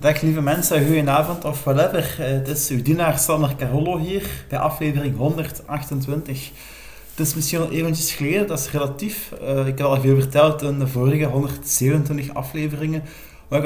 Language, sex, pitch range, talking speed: Dutch, male, 135-155 Hz, 165 wpm